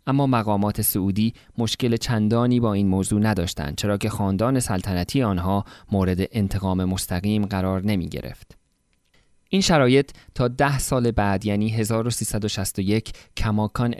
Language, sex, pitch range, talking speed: Persian, male, 100-120 Hz, 125 wpm